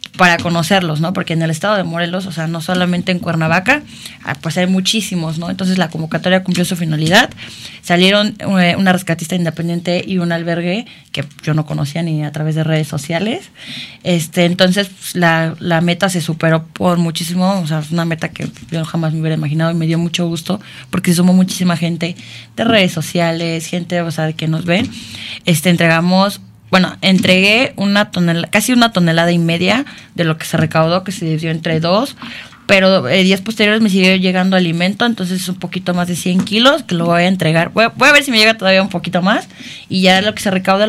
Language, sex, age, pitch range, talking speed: Spanish, female, 20-39, 165-190 Hz, 205 wpm